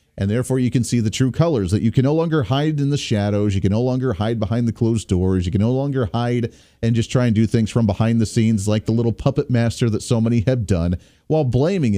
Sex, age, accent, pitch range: male, 40-59, American, 110-145 Hz